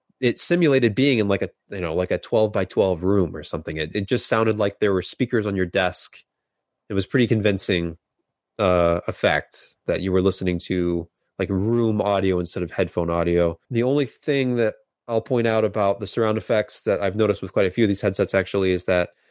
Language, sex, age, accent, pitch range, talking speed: English, male, 20-39, American, 95-115 Hz, 215 wpm